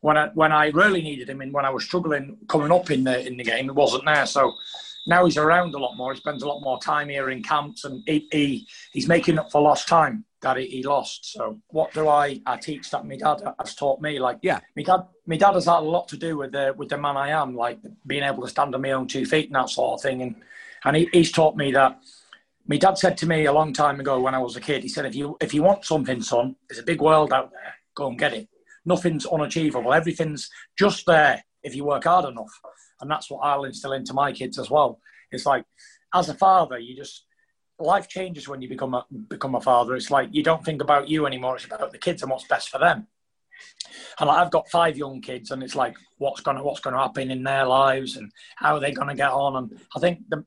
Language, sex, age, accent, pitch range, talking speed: English, male, 30-49, British, 135-165 Hz, 260 wpm